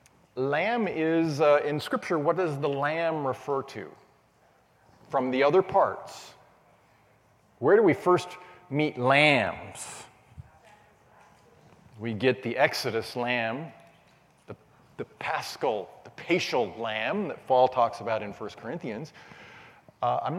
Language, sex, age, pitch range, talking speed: English, male, 40-59, 120-160 Hz, 120 wpm